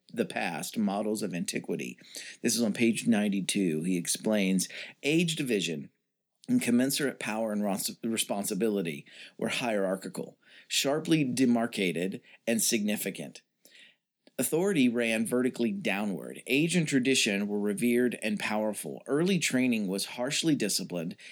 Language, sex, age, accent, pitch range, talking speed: English, male, 40-59, American, 105-145 Hz, 115 wpm